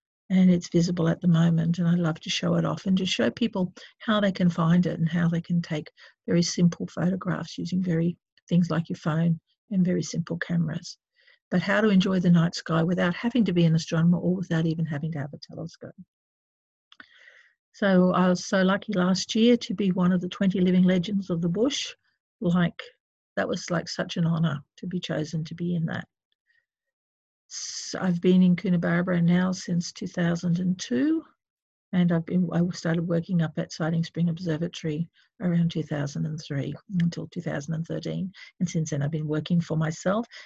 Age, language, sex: 50-69, English, female